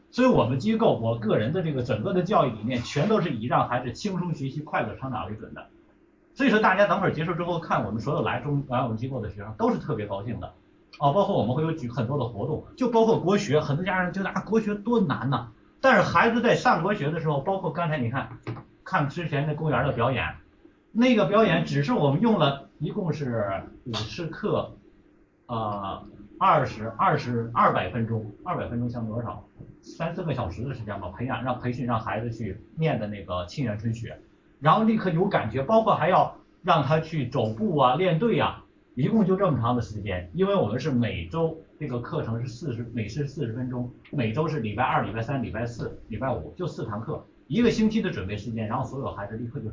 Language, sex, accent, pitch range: Chinese, male, native, 115-185 Hz